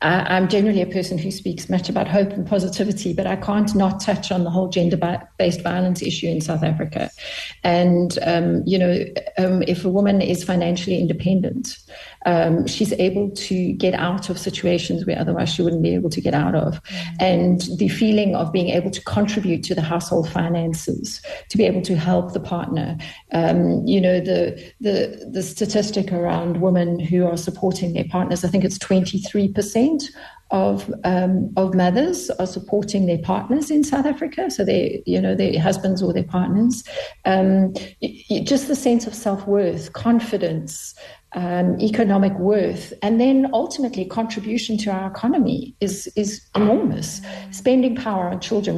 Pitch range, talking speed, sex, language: 175-205 Hz, 170 wpm, female, English